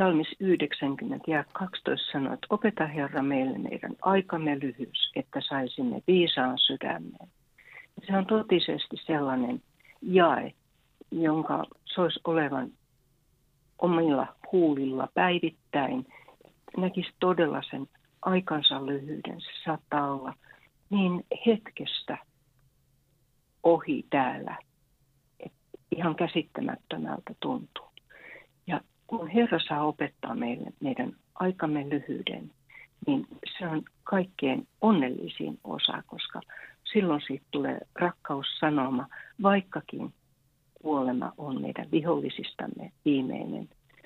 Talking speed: 90 wpm